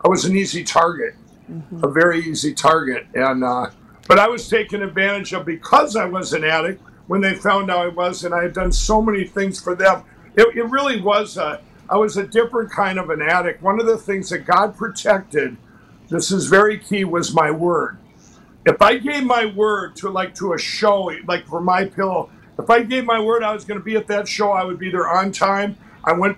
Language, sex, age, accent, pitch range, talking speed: English, male, 50-69, American, 175-205 Hz, 225 wpm